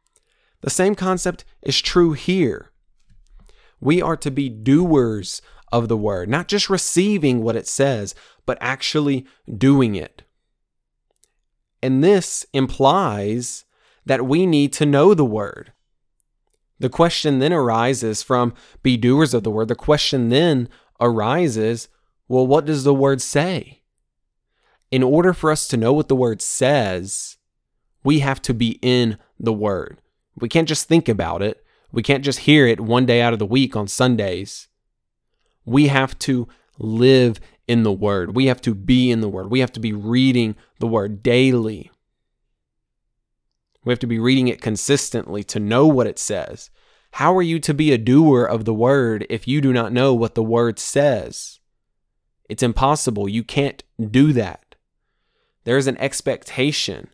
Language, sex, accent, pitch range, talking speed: English, male, American, 115-145 Hz, 160 wpm